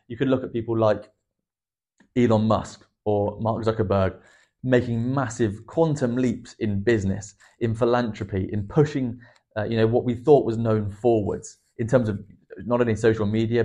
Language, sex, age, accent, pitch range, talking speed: English, male, 30-49, British, 100-120 Hz, 165 wpm